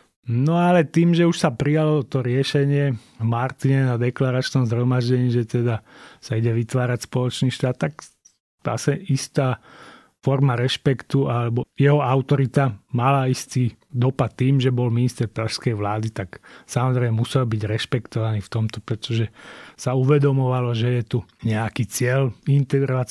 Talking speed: 140 wpm